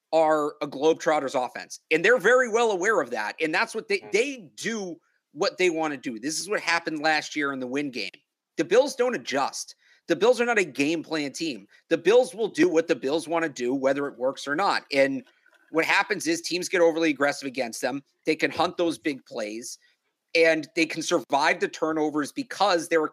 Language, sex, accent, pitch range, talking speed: English, male, American, 145-235 Hz, 220 wpm